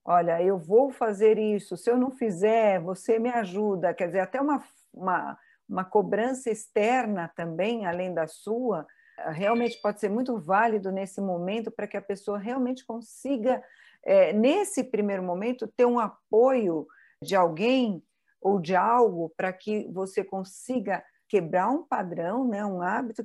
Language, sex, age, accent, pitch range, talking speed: Portuguese, female, 50-69, Brazilian, 185-235 Hz, 145 wpm